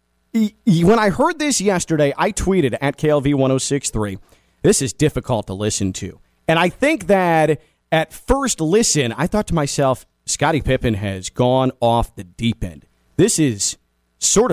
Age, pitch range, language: 40-59, 110-180 Hz, English